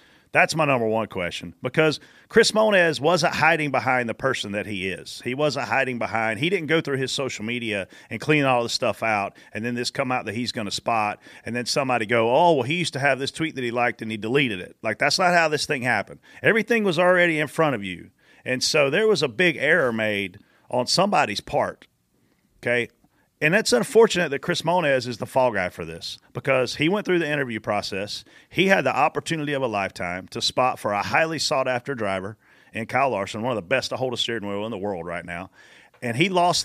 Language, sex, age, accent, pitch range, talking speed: English, male, 40-59, American, 115-150 Hz, 230 wpm